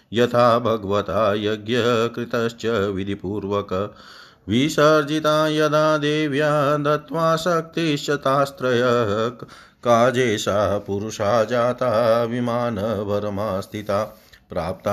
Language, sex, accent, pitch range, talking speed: Hindi, male, native, 105-135 Hz, 50 wpm